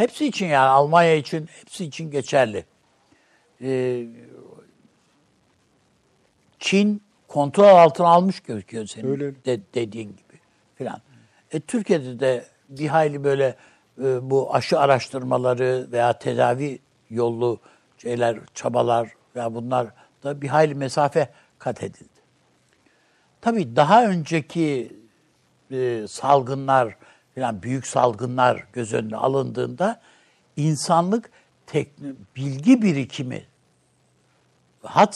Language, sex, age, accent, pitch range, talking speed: Turkish, male, 60-79, native, 125-180 Hz, 95 wpm